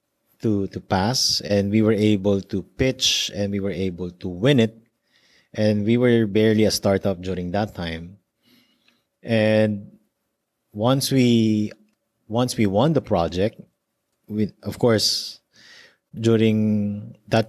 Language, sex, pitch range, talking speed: English, male, 95-115 Hz, 130 wpm